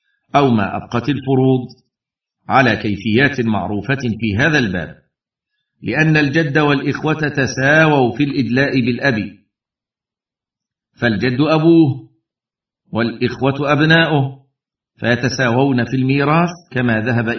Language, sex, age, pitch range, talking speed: Arabic, male, 50-69, 115-140 Hz, 90 wpm